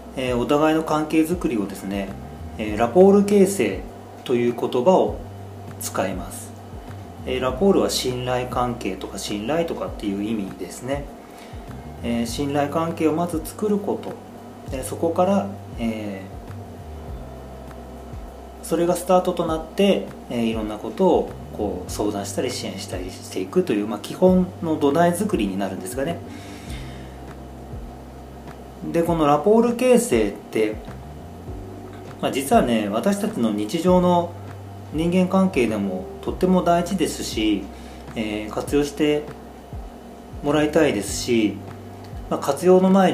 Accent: native